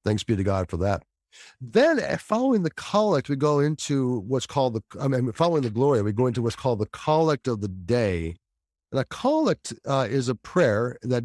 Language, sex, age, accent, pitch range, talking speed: English, male, 50-69, American, 100-130 Hz, 210 wpm